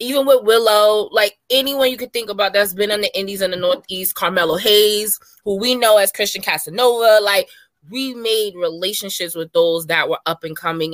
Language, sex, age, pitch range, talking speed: English, female, 20-39, 165-205 Hz, 195 wpm